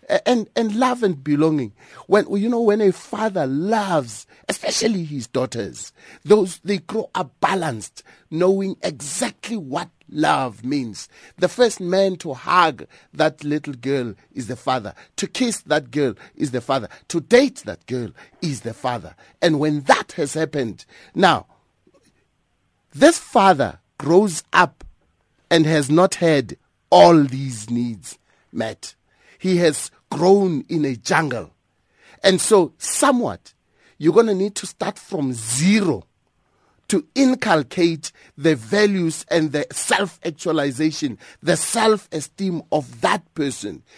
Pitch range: 135-195 Hz